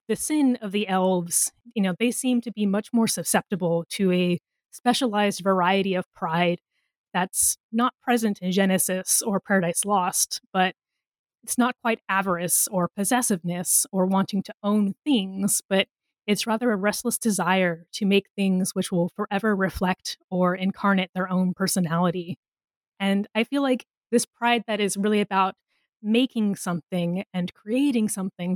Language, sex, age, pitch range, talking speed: English, female, 20-39, 185-220 Hz, 155 wpm